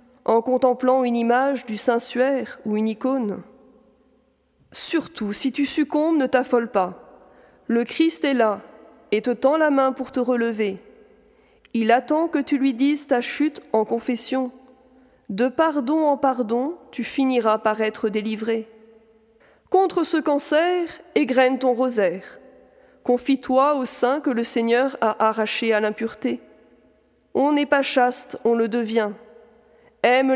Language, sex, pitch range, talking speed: French, female, 225-275 Hz, 140 wpm